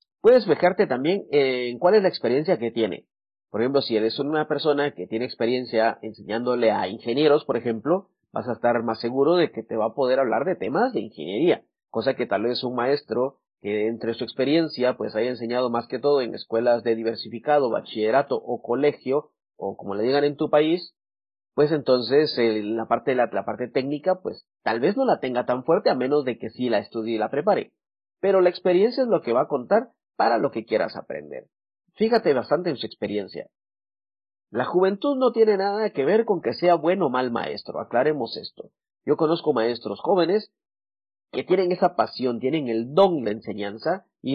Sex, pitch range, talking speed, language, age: male, 115-180 Hz, 195 wpm, English, 40-59